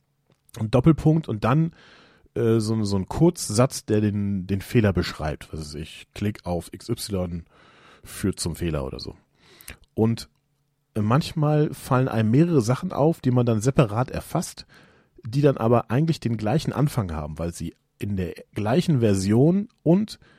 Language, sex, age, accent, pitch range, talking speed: German, male, 40-59, German, 105-145 Hz, 155 wpm